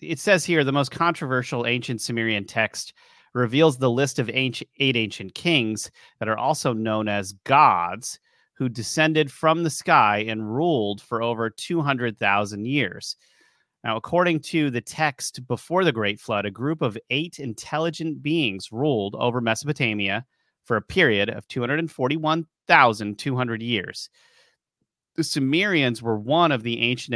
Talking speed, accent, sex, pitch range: 140 wpm, American, male, 110-150 Hz